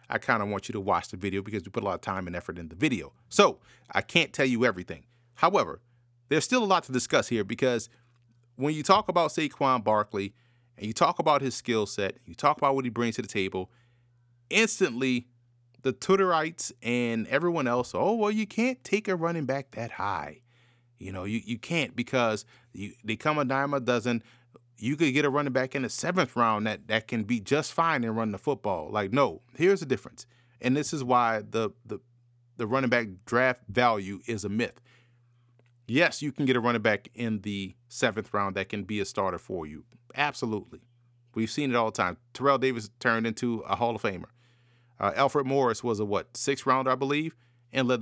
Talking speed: 215 wpm